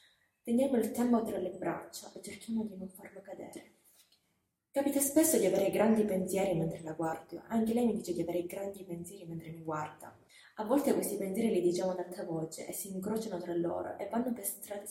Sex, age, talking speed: female, 20-39, 200 wpm